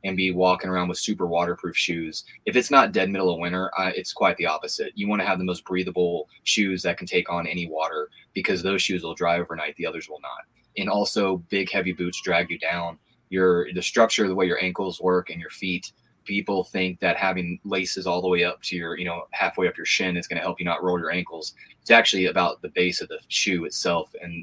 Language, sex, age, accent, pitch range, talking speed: English, male, 20-39, American, 90-100 Hz, 245 wpm